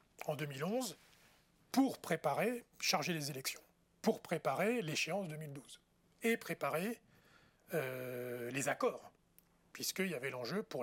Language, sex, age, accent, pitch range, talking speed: French, male, 40-59, French, 140-190 Hz, 115 wpm